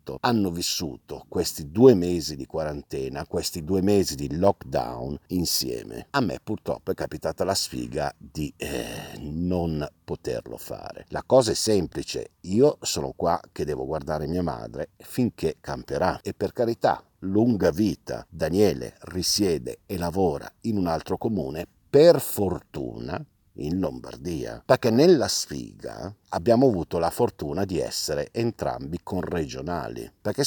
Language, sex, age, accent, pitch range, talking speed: Italian, male, 50-69, native, 80-110 Hz, 135 wpm